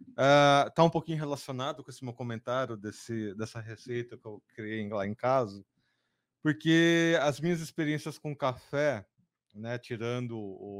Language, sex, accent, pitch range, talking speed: Portuguese, male, Brazilian, 115-145 Hz, 150 wpm